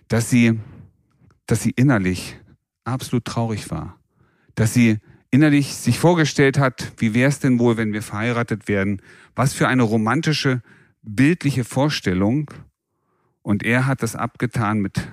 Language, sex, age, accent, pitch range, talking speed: German, male, 40-59, German, 100-130 Hz, 140 wpm